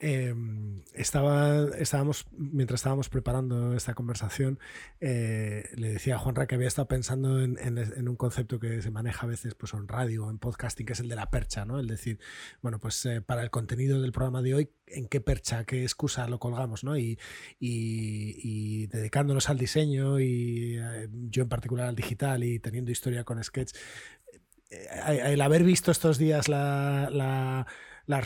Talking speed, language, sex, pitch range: 185 wpm, Spanish, male, 120-140 Hz